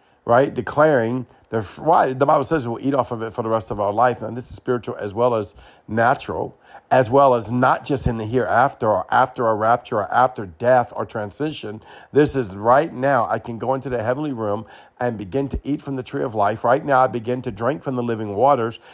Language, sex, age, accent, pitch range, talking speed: English, male, 50-69, American, 120-155 Hz, 230 wpm